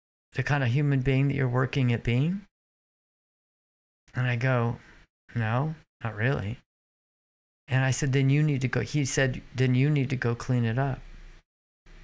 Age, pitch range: 50-69, 125-150 Hz